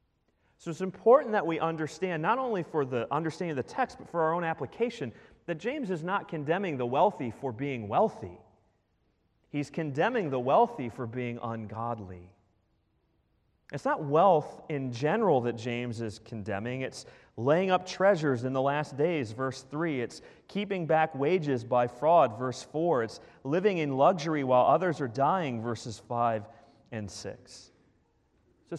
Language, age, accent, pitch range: English, 30-49, American, 115-170 Hz